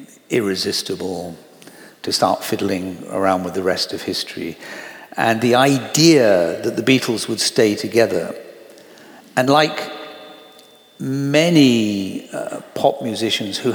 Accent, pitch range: British, 105-135 Hz